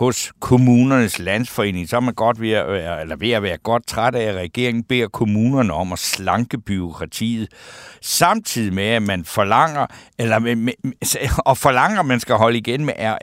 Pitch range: 105-135 Hz